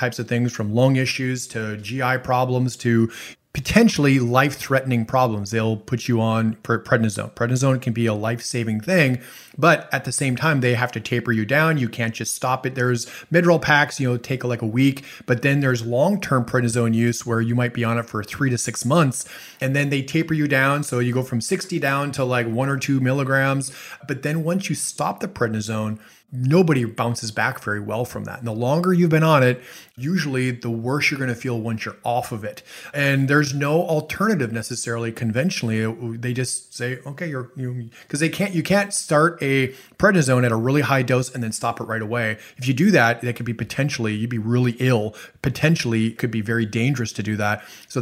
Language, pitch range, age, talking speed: English, 115-140 Hz, 30-49, 210 wpm